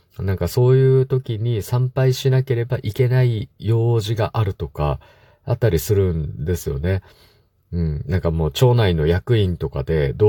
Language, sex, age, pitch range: Japanese, male, 50-69, 80-120 Hz